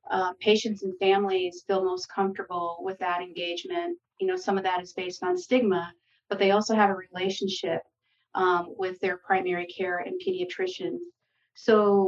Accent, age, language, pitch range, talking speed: American, 40-59, English, 180-220 Hz, 165 wpm